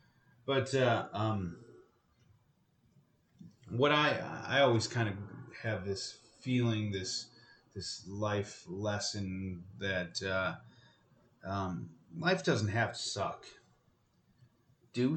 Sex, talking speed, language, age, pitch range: male, 100 wpm, English, 30-49, 100-125 Hz